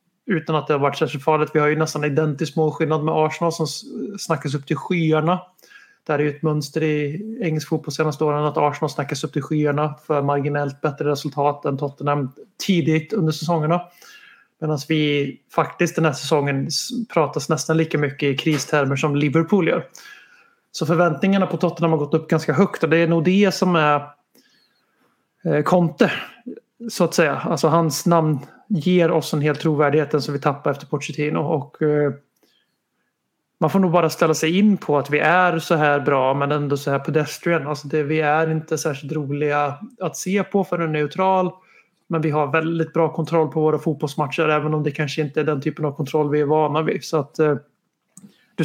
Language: Swedish